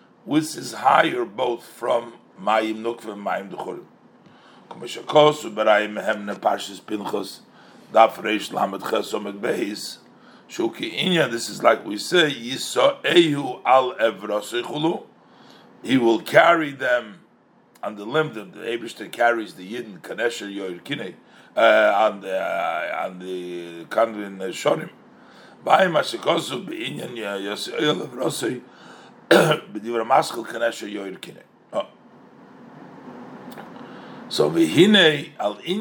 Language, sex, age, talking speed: English, male, 50-69, 60 wpm